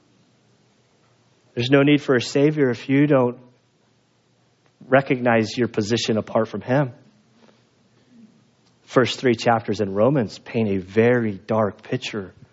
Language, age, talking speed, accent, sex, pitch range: English, 40-59, 120 wpm, American, male, 120-165 Hz